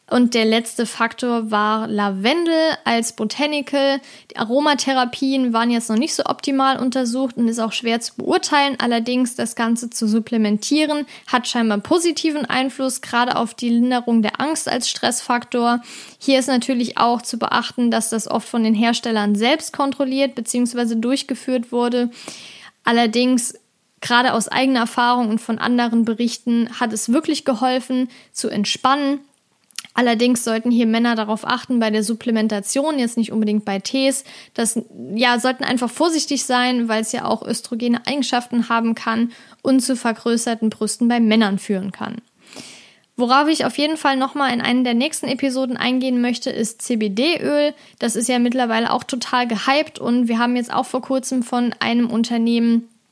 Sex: female